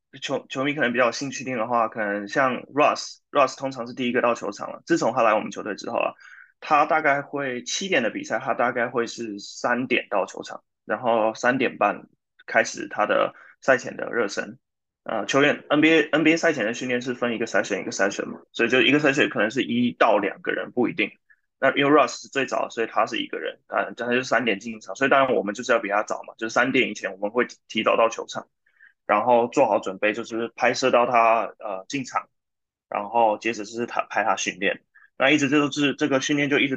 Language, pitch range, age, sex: Chinese, 115-135 Hz, 20-39, male